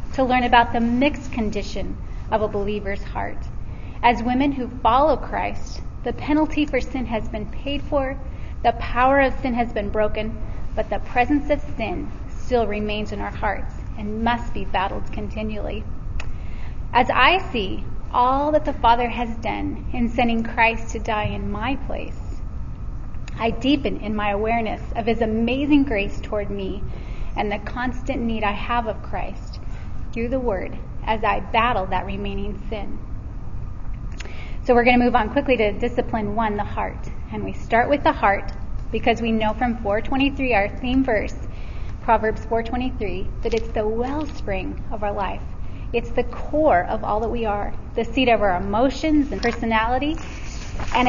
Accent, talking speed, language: American, 165 wpm, English